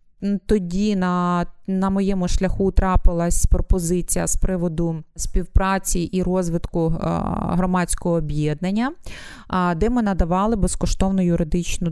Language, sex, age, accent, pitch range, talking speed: Ukrainian, female, 20-39, native, 180-205 Hz, 95 wpm